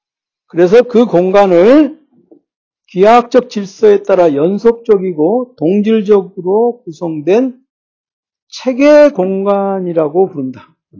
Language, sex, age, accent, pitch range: Korean, male, 60-79, native, 160-240 Hz